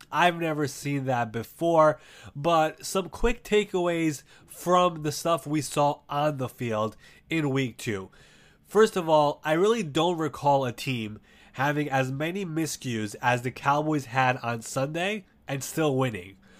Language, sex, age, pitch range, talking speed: English, male, 20-39, 130-170 Hz, 150 wpm